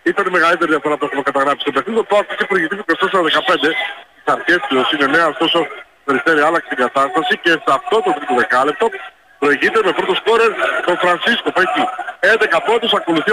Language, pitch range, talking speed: Greek, 150-220 Hz, 145 wpm